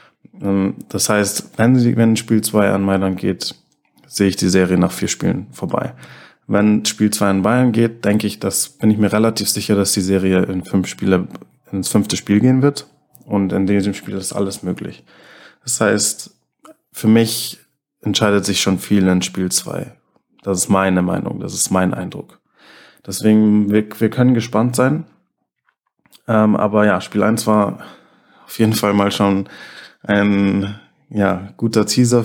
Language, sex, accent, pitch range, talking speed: German, male, German, 95-105 Hz, 160 wpm